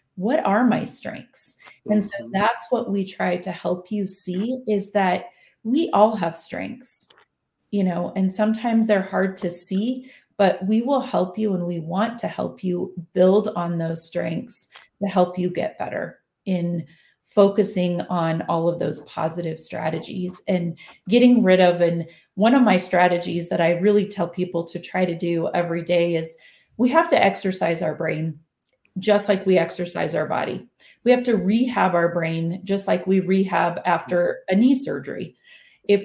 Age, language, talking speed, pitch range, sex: 30-49, English, 175 wpm, 170-210 Hz, female